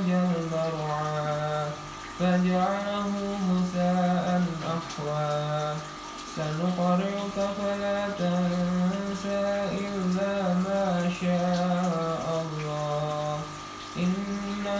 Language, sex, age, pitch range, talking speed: English, male, 20-39, 160-195 Hz, 40 wpm